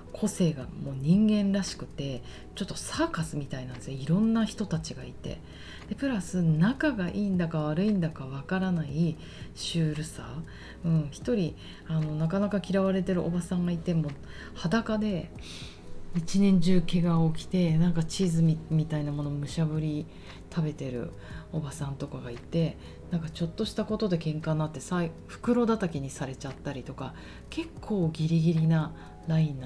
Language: Japanese